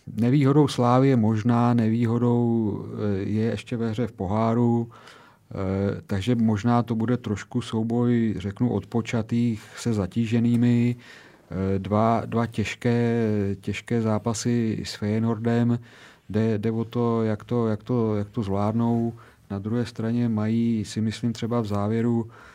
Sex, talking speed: male, 130 wpm